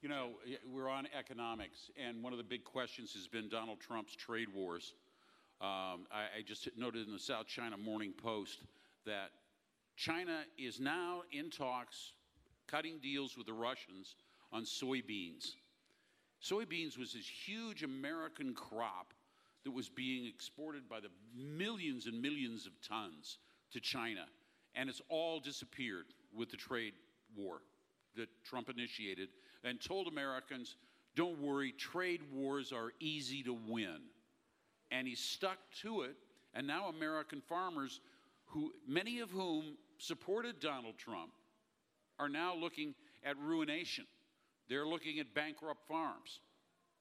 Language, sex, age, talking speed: English, male, 50-69, 140 wpm